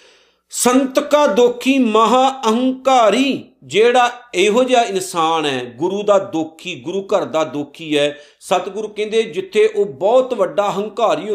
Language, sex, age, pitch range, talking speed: Punjabi, male, 50-69, 160-220 Hz, 130 wpm